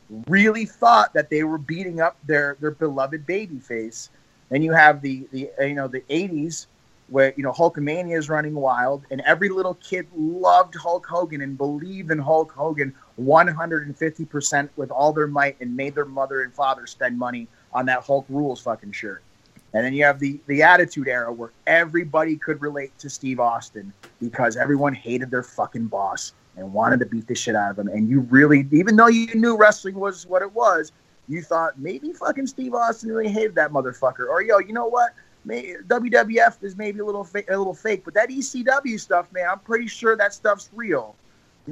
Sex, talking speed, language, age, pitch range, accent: male, 200 wpm, English, 30-49, 130-180 Hz, American